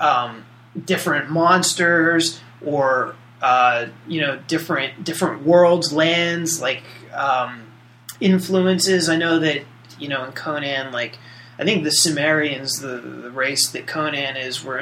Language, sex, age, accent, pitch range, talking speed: English, male, 30-49, American, 125-165 Hz, 135 wpm